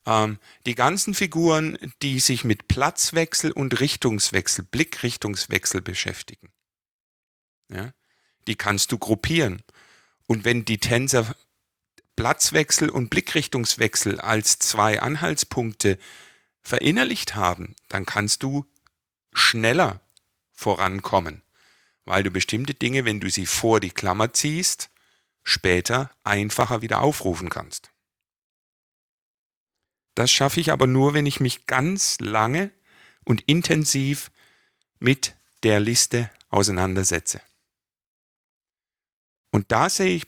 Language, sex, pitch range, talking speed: German, male, 105-135 Hz, 100 wpm